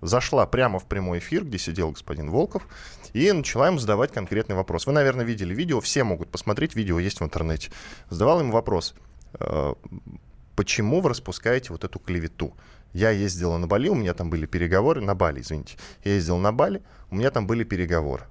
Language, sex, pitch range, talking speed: Russian, male, 85-125 Hz, 185 wpm